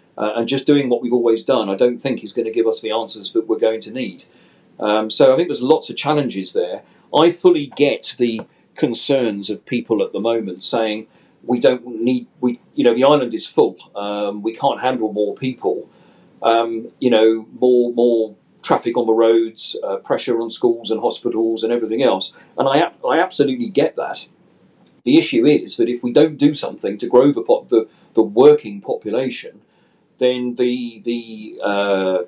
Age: 40-59